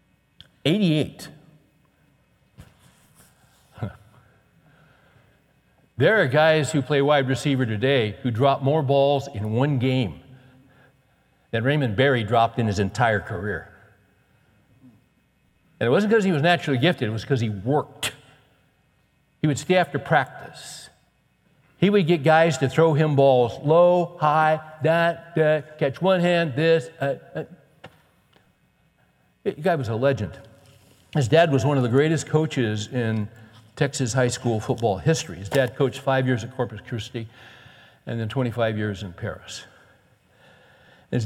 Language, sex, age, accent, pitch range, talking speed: English, male, 60-79, American, 120-155 Hz, 135 wpm